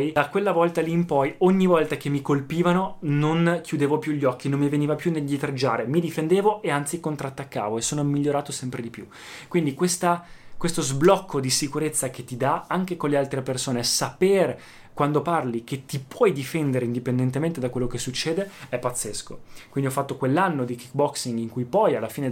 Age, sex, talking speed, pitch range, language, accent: 20-39, male, 195 wpm, 130-160 Hz, Italian, native